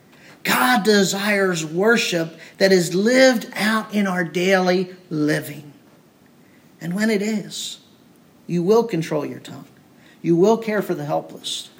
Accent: American